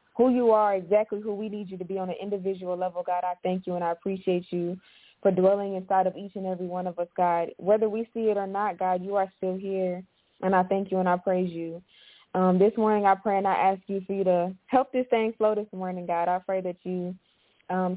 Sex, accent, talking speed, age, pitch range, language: female, American, 255 wpm, 20-39, 175-195 Hz, English